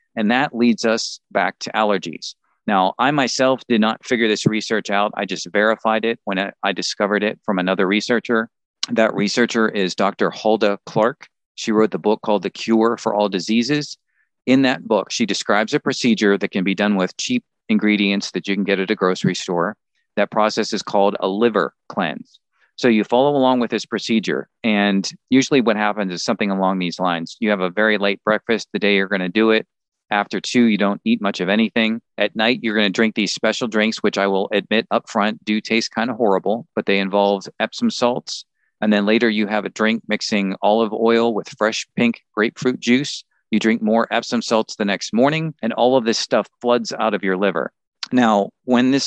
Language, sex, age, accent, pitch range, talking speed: English, male, 40-59, American, 100-120 Hz, 205 wpm